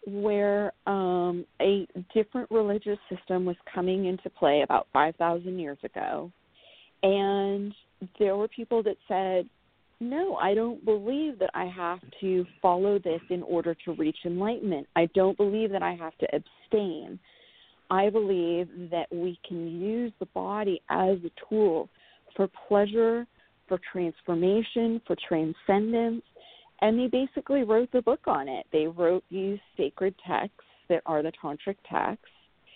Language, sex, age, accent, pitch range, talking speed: English, female, 40-59, American, 175-225 Hz, 145 wpm